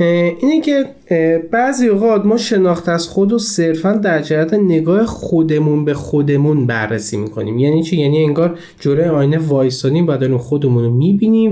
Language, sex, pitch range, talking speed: Persian, male, 135-205 Hz, 145 wpm